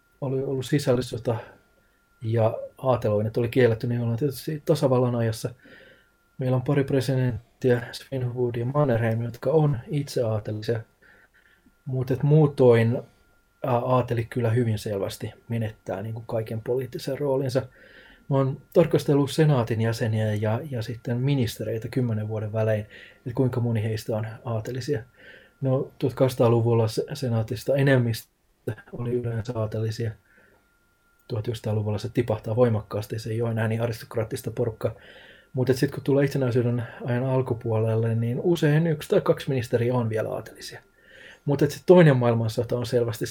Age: 20-39